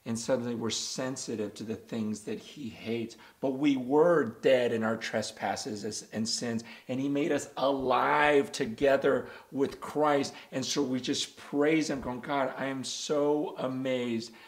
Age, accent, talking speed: 40-59, American, 160 wpm